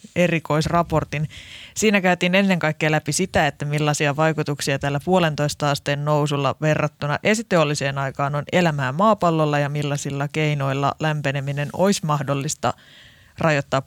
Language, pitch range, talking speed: Finnish, 145-175 Hz, 115 wpm